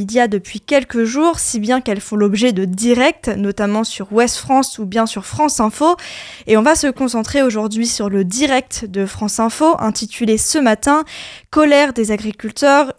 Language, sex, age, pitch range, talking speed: French, female, 10-29, 210-260 Hz, 170 wpm